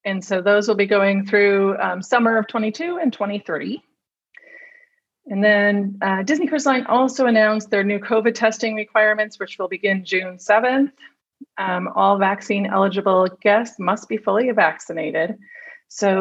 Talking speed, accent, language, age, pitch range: 150 wpm, American, English, 40-59, 190-235 Hz